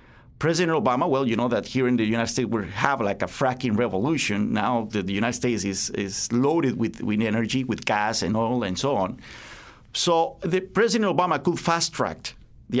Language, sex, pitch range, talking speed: English, male, 115-145 Hz, 190 wpm